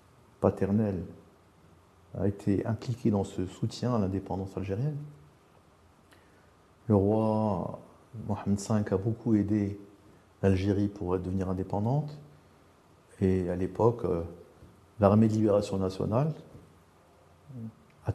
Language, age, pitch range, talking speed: French, 50-69, 95-115 Hz, 95 wpm